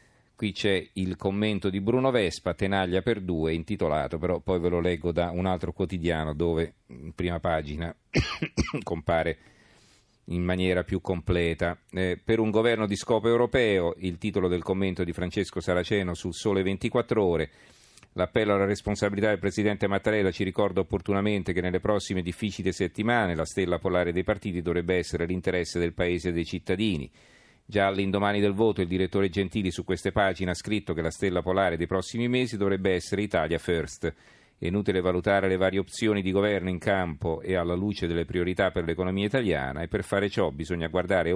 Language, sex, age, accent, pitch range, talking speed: Italian, male, 40-59, native, 85-100 Hz, 175 wpm